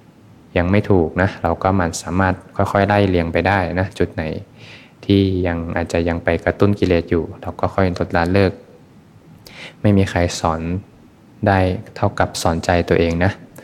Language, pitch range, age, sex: Thai, 85-100 Hz, 20-39, male